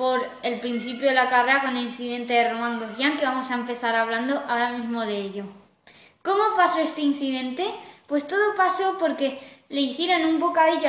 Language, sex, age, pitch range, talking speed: Spanish, female, 20-39, 265-340 Hz, 180 wpm